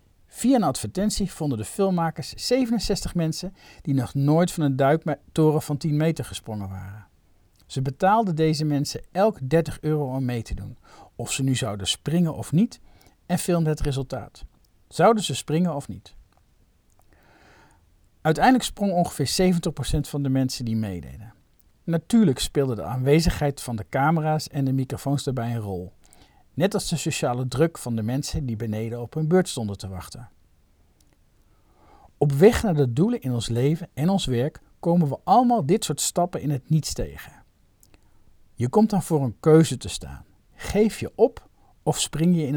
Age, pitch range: 50-69, 105-165 Hz